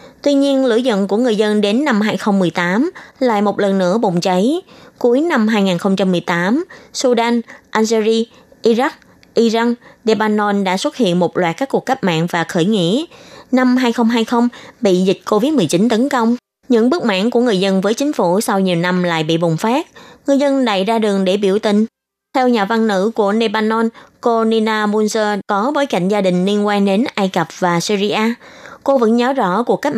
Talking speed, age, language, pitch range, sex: 190 wpm, 20-39, Vietnamese, 190-250 Hz, female